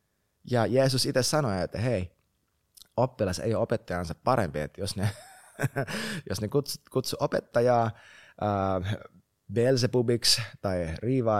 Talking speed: 105 wpm